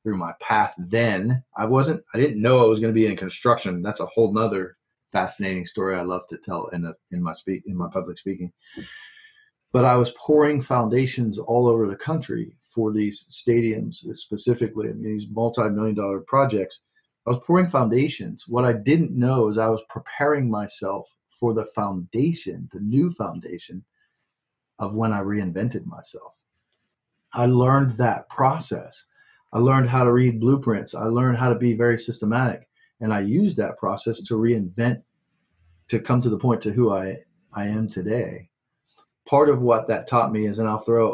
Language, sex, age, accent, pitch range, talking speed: English, male, 40-59, American, 110-130 Hz, 180 wpm